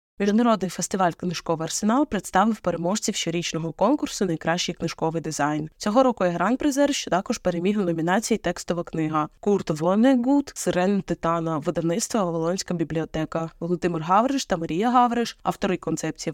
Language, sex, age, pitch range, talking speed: Ukrainian, female, 20-39, 165-225 Hz, 130 wpm